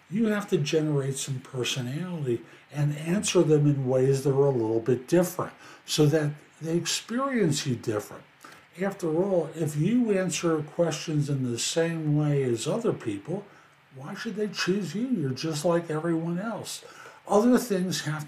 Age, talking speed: 60-79, 160 wpm